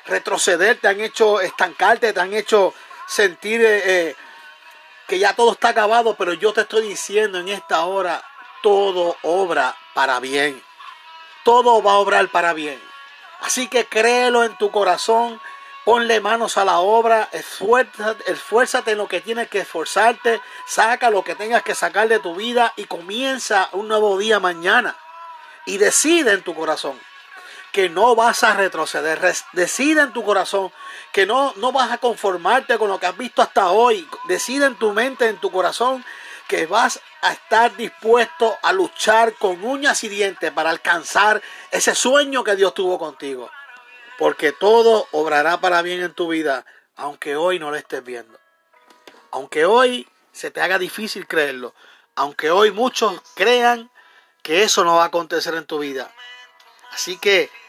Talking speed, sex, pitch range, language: 160 wpm, male, 185-245 Hz, Spanish